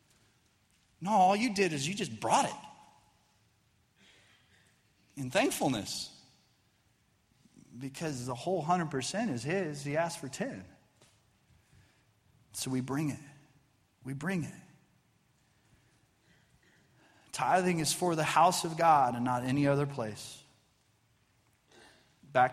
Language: English